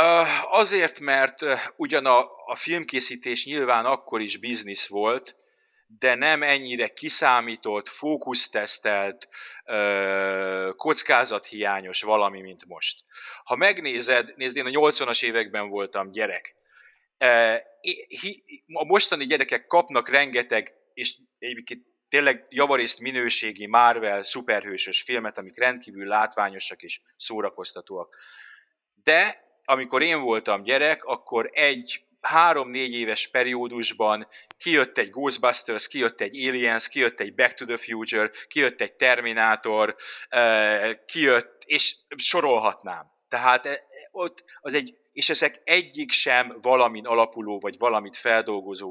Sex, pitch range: male, 105-135 Hz